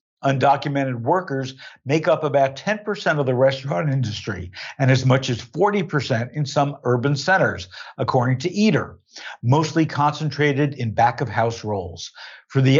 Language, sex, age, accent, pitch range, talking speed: English, male, 60-79, American, 130-165 Hz, 155 wpm